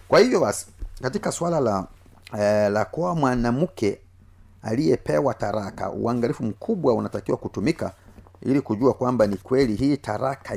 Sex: male